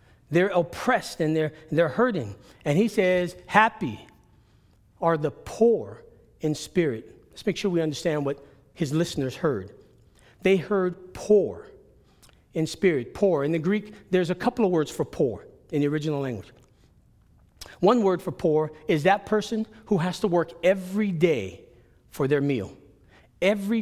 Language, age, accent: English, 40-59, American